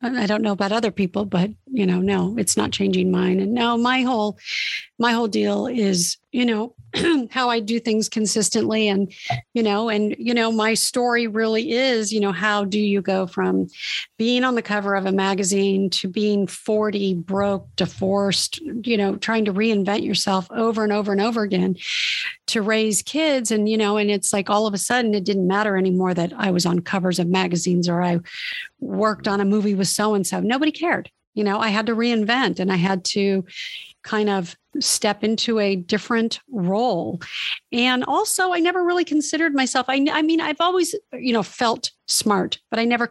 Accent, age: American, 50-69